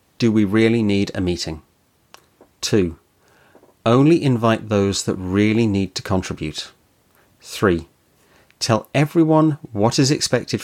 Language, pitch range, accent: English, 95-120 Hz, British